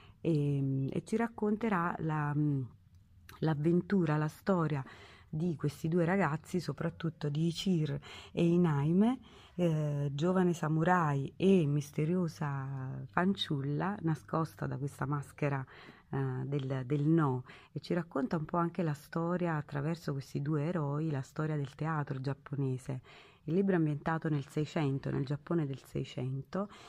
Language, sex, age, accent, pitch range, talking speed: Italian, female, 30-49, native, 140-170 Hz, 125 wpm